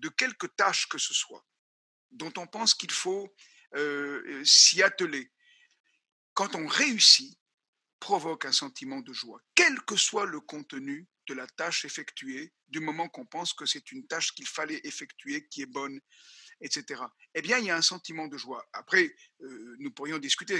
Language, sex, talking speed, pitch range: French, male, 175 wpm, 150-240 Hz